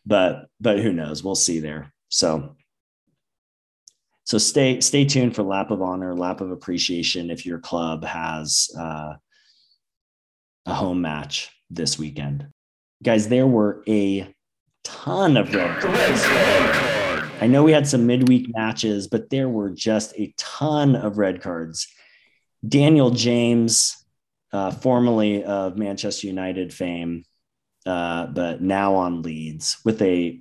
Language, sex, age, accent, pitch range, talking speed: English, male, 30-49, American, 85-110 Hz, 135 wpm